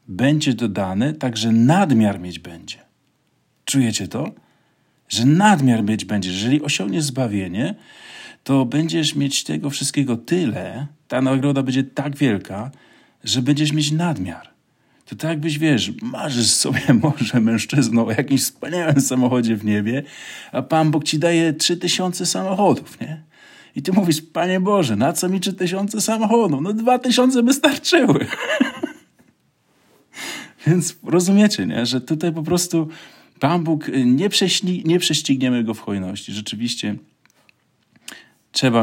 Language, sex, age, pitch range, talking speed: Polish, male, 40-59, 105-160 Hz, 130 wpm